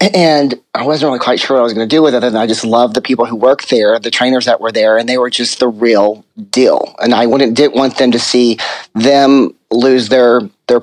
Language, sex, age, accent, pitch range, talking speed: English, male, 30-49, American, 120-135 Hz, 260 wpm